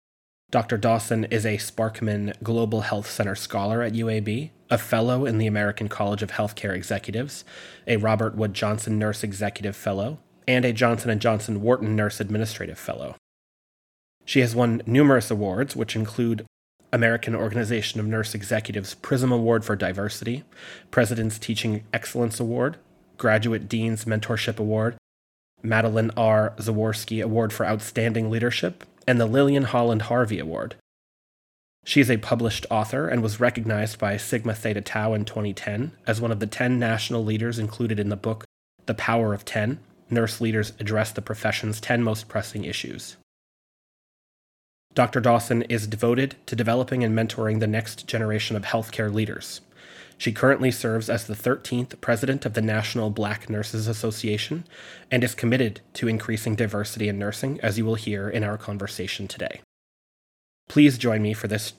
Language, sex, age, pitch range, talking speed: English, male, 30-49, 105-120 Hz, 155 wpm